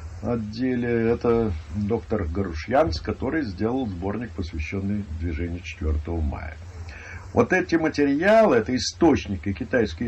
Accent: native